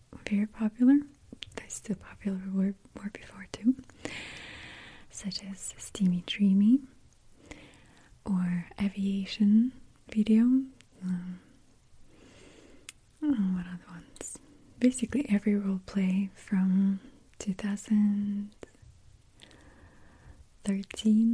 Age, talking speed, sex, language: 20-39, 70 wpm, female, English